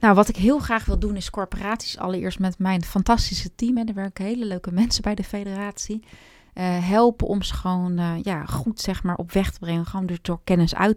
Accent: Dutch